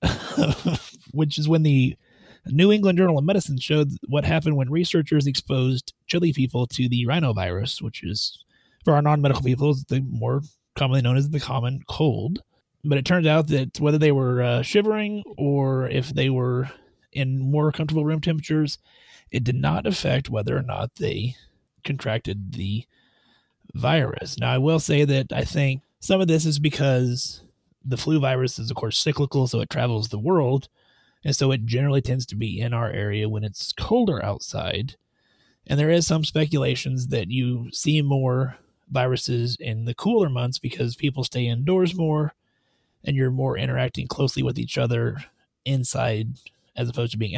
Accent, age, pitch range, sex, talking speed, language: American, 30-49, 120-150 Hz, male, 170 wpm, English